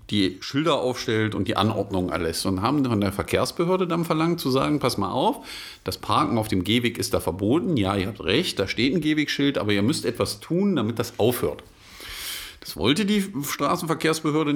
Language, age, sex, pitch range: German, 50-69, male, 105-145 Hz